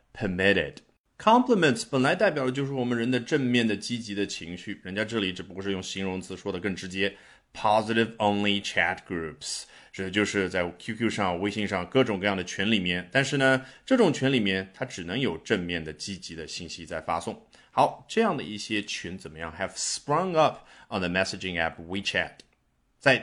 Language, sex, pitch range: Chinese, male, 95-125 Hz